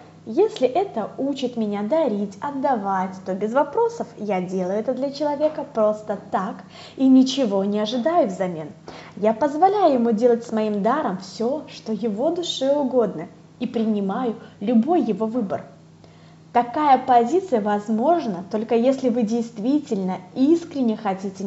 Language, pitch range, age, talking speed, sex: Russian, 200-280 Hz, 20-39, 130 wpm, female